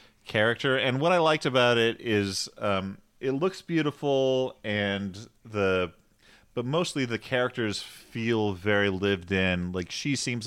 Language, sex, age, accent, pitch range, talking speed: English, male, 30-49, American, 95-115 Hz, 145 wpm